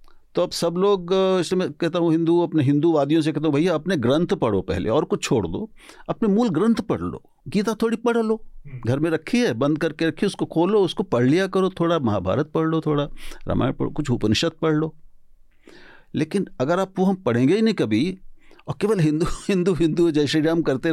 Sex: male